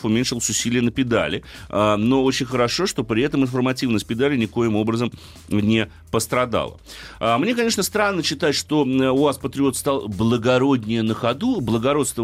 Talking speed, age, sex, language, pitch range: 140 wpm, 30-49, male, Russian, 95-135 Hz